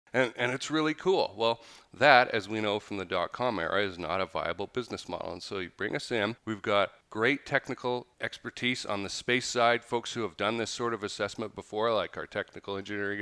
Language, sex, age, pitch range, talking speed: English, male, 40-59, 100-120 Hz, 220 wpm